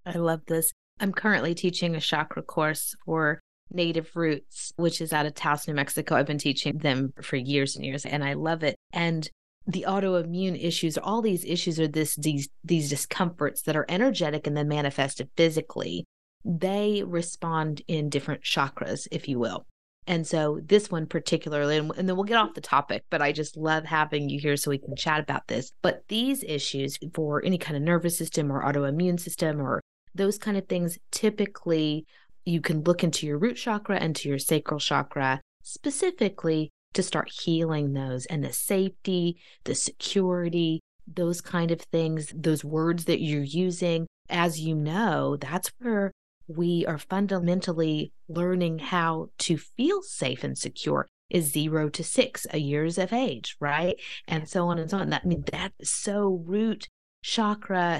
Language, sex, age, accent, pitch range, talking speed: English, female, 30-49, American, 150-180 Hz, 175 wpm